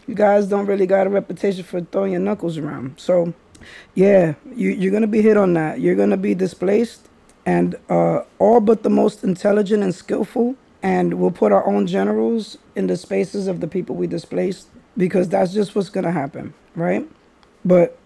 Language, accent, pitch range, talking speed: English, American, 170-210 Hz, 185 wpm